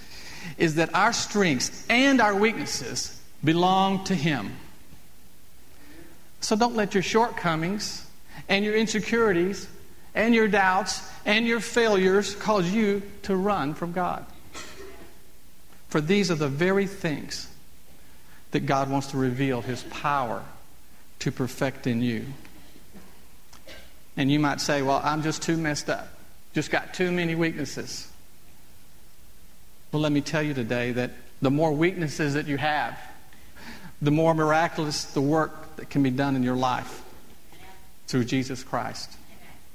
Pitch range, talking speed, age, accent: 130-190 Hz, 135 wpm, 50-69, American